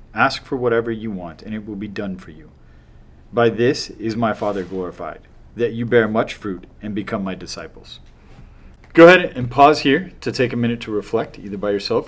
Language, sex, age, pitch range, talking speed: English, male, 30-49, 95-120 Hz, 205 wpm